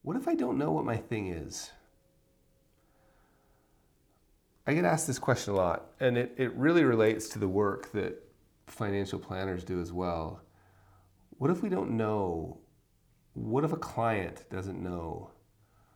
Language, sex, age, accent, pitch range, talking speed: English, male, 30-49, American, 90-110 Hz, 155 wpm